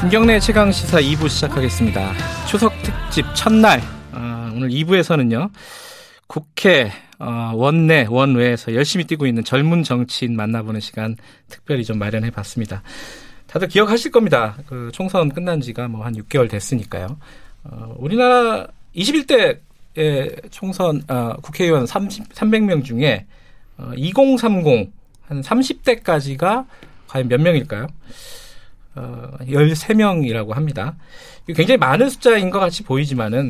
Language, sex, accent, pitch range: Korean, male, native, 120-180 Hz